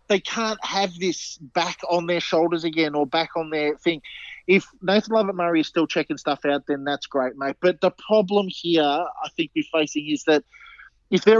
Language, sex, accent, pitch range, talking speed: English, male, Australian, 160-205 Hz, 205 wpm